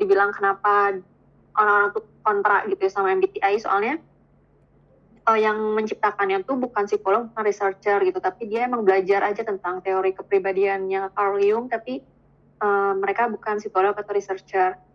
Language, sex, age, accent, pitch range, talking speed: Indonesian, female, 20-39, native, 205-255 Hz, 145 wpm